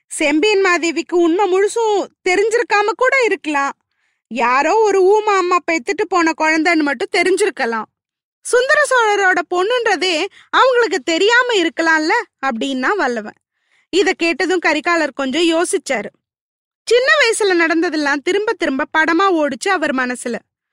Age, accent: 20-39, native